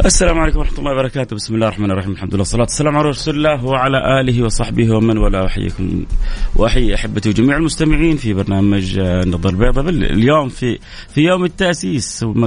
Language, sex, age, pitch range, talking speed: Arabic, male, 30-49, 100-130 Hz, 175 wpm